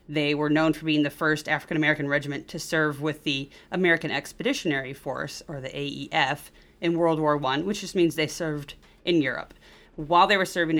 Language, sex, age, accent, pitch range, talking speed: English, female, 30-49, American, 145-180 Hz, 190 wpm